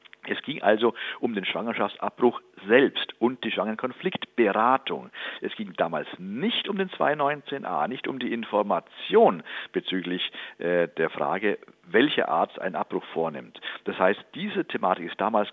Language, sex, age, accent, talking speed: German, male, 50-69, German, 140 wpm